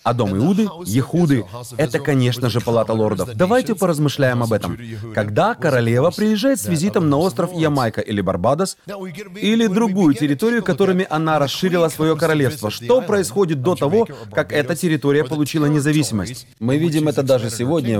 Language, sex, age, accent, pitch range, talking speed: Russian, male, 30-49, native, 120-170 Hz, 150 wpm